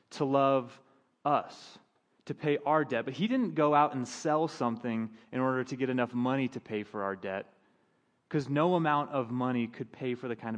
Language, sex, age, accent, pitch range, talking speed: English, male, 30-49, American, 125-155 Hz, 205 wpm